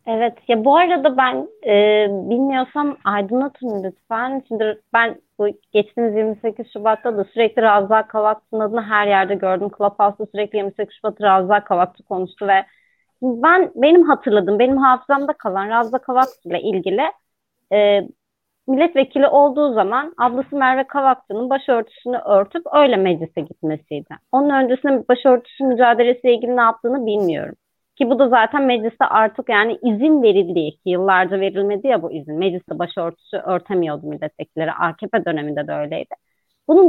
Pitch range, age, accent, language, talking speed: 200-270 Hz, 30-49, native, Turkish, 135 wpm